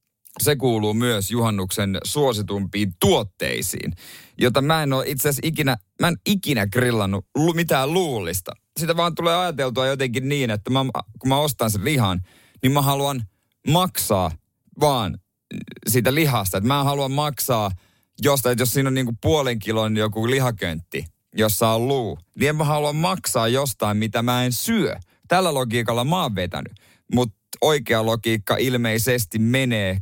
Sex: male